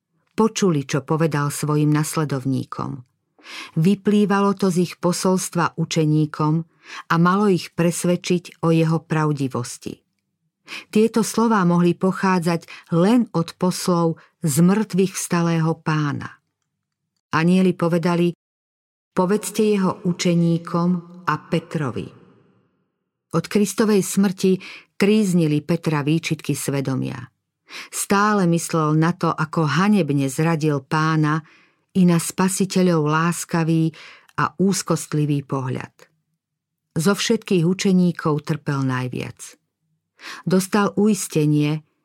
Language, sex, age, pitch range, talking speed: Slovak, female, 50-69, 155-185 Hz, 95 wpm